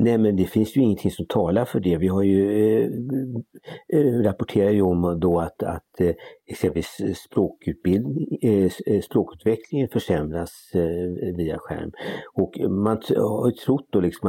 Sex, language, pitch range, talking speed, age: male, Swedish, 85-105 Hz, 150 wpm, 60-79